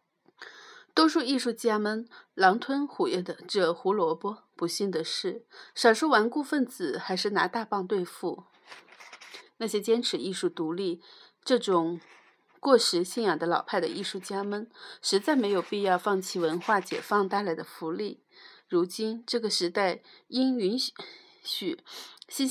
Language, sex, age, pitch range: Chinese, female, 30-49, 180-250 Hz